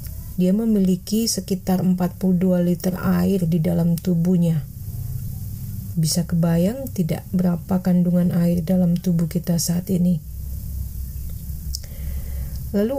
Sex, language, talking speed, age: female, Indonesian, 95 wpm, 30-49